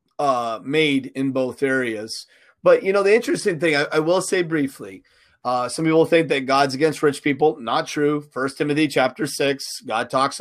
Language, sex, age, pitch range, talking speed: English, male, 30-49, 135-165 Hz, 190 wpm